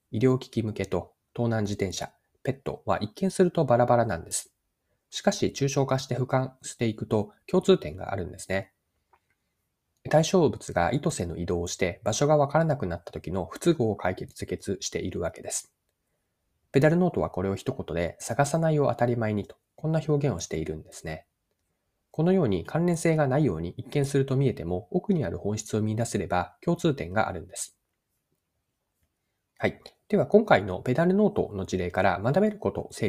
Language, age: Japanese, 20-39